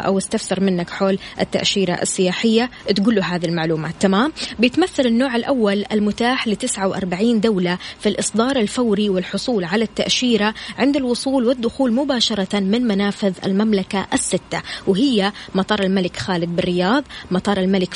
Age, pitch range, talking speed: 20-39, 190-235 Hz, 130 wpm